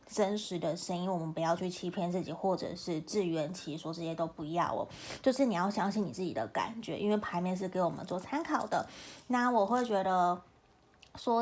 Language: Chinese